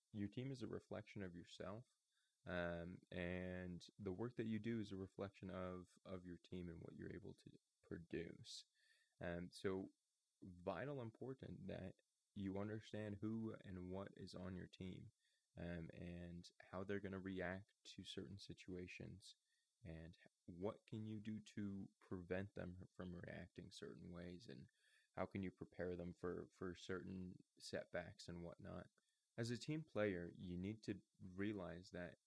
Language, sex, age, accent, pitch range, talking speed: English, male, 20-39, American, 90-105 Hz, 155 wpm